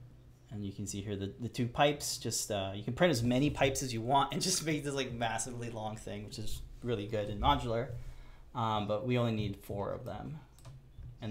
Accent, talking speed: American, 230 wpm